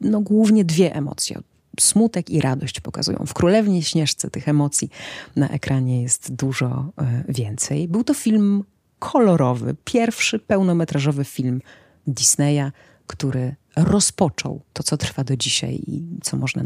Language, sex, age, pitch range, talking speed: Polish, female, 30-49, 135-165 Hz, 130 wpm